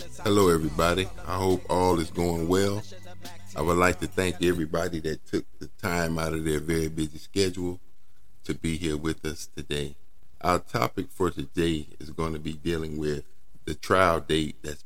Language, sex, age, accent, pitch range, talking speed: English, male, 50-69, American, 75-95 Hz, 180 wpm